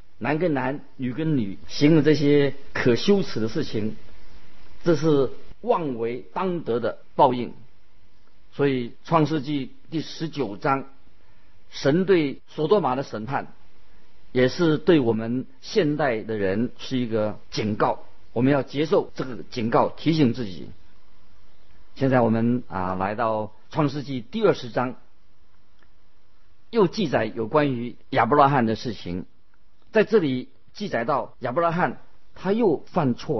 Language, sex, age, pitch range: Chinese, male, 50-69, 110-155 Hz